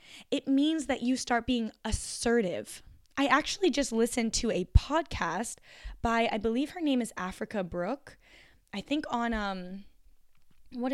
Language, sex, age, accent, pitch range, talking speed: English, female, 10-29, American, 200-255 Hz, 150 wpm